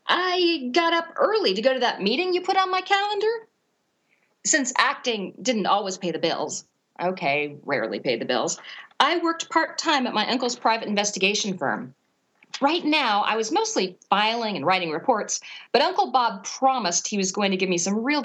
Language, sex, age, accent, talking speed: English, female, 40-59, American, 185 wpm